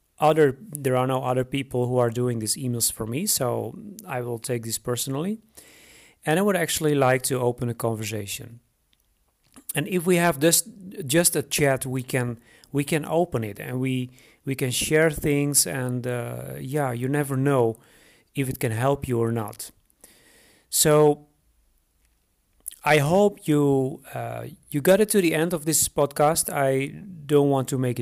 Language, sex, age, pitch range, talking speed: English, male, 40-59, 120-155 Hz, 170 wpm